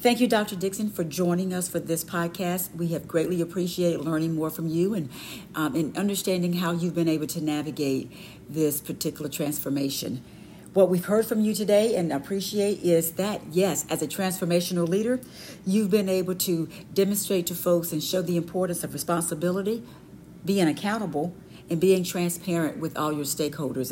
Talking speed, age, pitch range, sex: 170 wpm, 50-69, 155-185 Hz, female